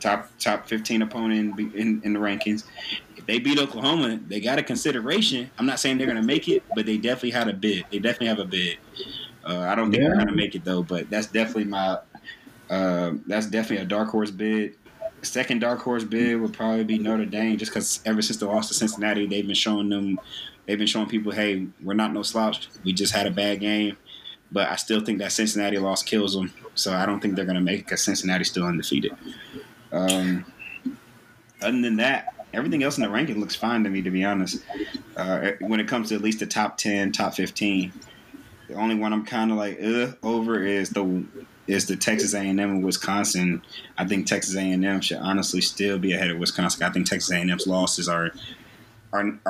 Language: English